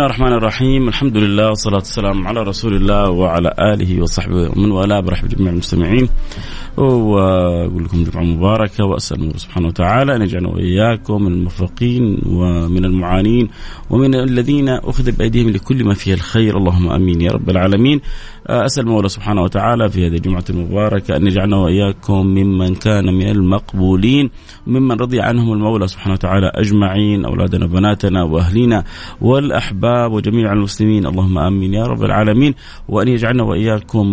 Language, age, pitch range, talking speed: Arabic, 30-49, 95-115 Hz, 145 wpm